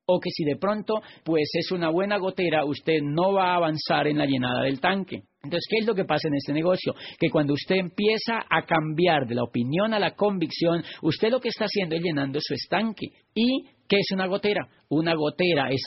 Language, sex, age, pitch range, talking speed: Spanish, male, 40-59, 135-175 Hz, 220 wpm